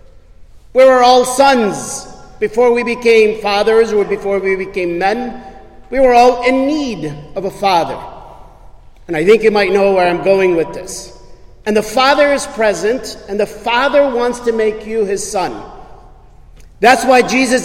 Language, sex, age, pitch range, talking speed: English, male, 50-69, 200-255 Hz, 165 wpm